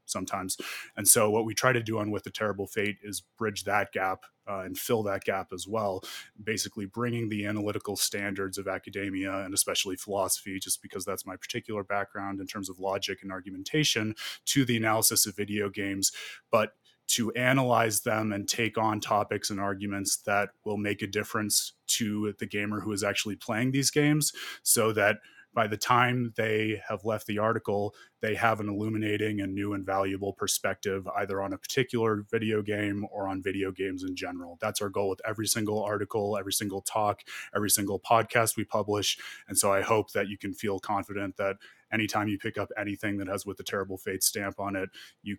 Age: 20-39